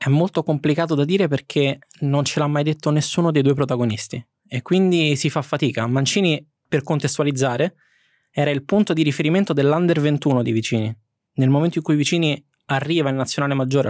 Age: 20-39